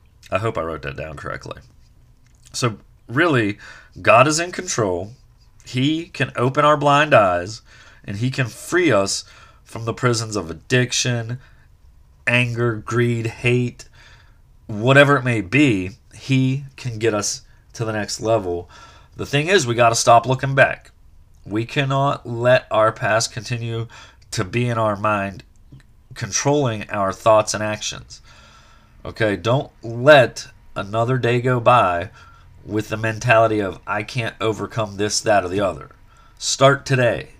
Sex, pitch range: male, 105-125 Hz